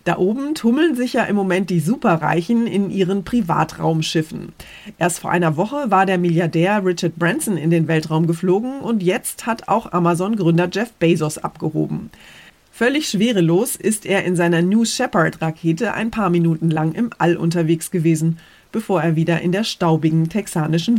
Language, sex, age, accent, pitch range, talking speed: German, female, 30-49, German, 165-215 Hz, 160 wpm